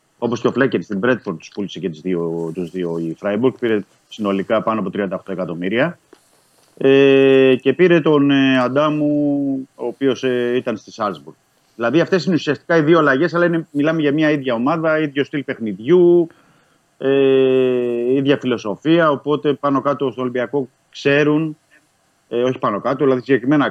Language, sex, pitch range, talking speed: Greek, male, 100-140 Hz, 165 wpm